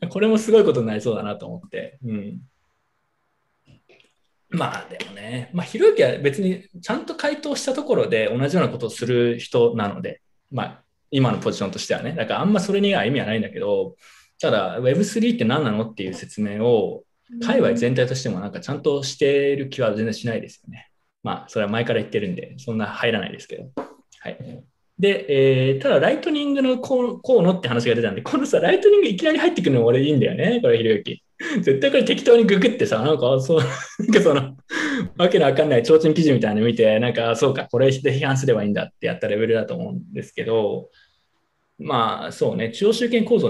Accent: native